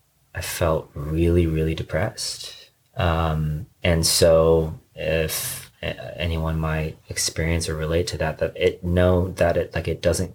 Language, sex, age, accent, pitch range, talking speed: English, male, 30-49, American, 80-90 Hz, 140 wpm